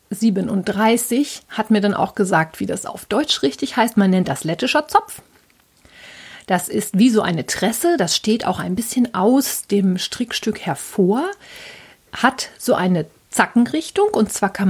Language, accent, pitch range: German, German, 195-250 Hz